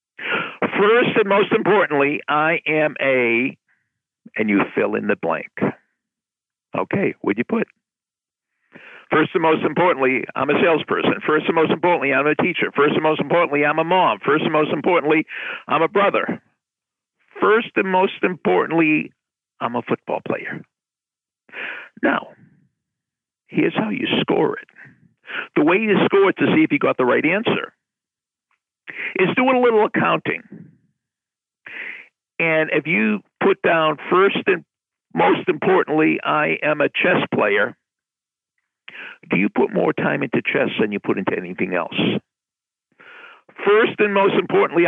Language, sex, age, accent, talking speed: English, male, 50-69, American, 145 wpm